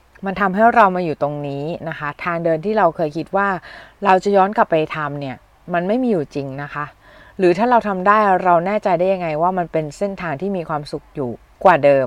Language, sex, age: Thai, female, 20-39